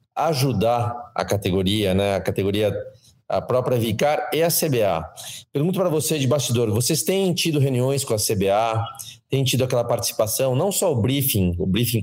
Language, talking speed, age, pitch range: Portuguese, 170 wpm, 40-59, 110-130 Hz